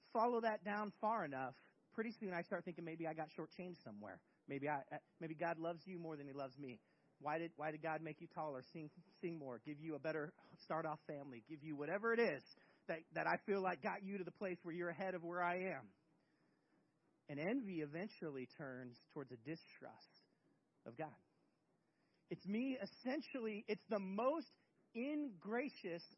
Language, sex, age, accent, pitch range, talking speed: English, male, 40-59, American, 165-270 Hz, 185 wpm